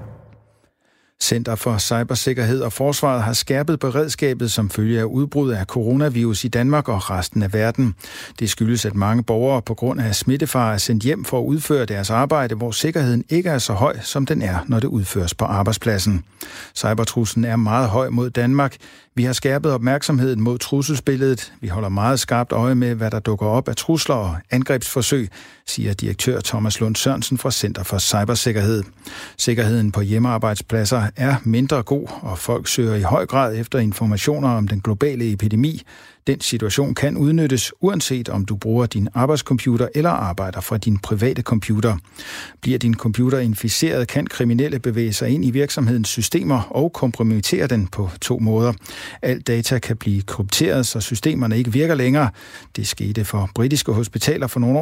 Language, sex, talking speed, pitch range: Danish, male, 170 wpm, 110-135 Hz